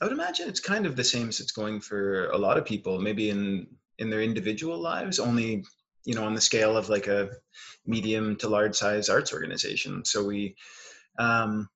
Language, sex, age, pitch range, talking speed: English, male, 20-39, 100-115 Hz, 205 wpm